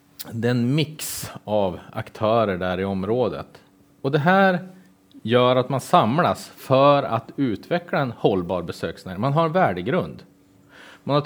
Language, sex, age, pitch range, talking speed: Swedish, male, 30-49, 110-140 Hz, 140 wpm